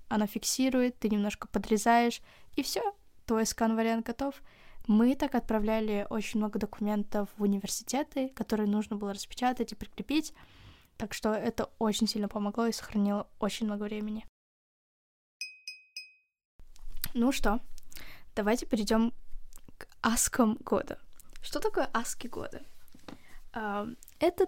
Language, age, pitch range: Russian, 10-29, 215-255 Hz